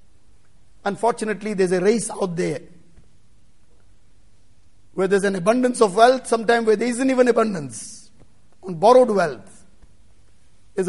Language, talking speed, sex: English, 120 wpm, male